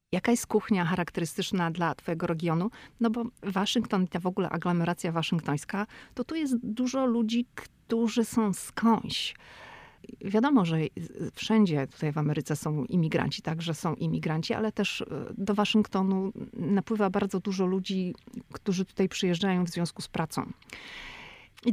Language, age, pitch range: Polish, 40-59, 170-230 Hz